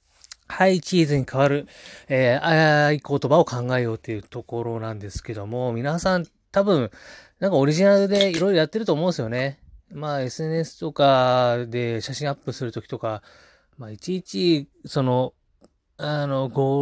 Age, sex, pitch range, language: 20-39, male, 115-150 Hz, Japanese